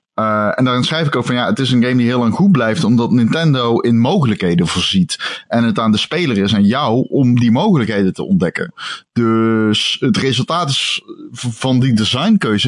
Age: 20-39